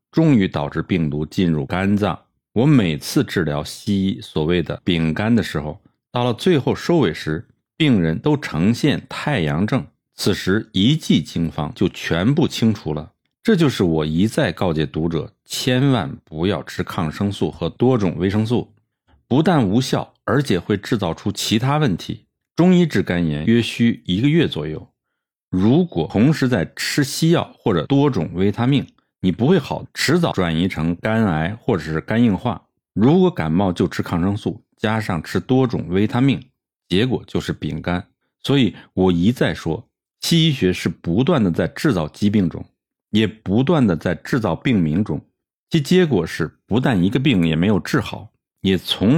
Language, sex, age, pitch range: Chinese, male, 50-69, 85-130 Hz